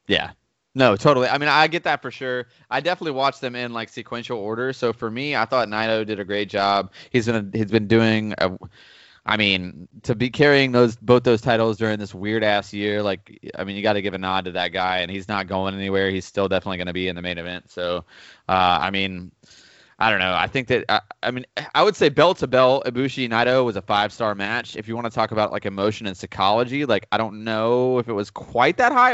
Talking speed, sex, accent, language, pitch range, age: 255 wpm, male, American, English, 100-130 Hz, 20-39